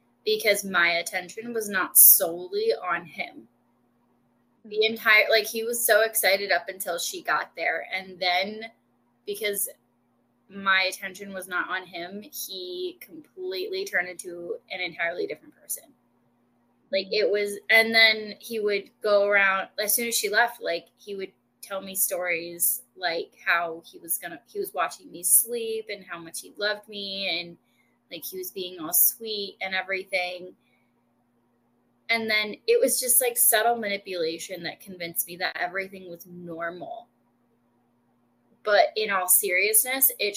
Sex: female